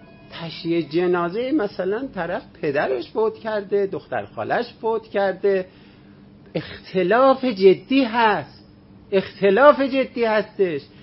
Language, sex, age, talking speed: Persian, male, 50-69, 90 wpm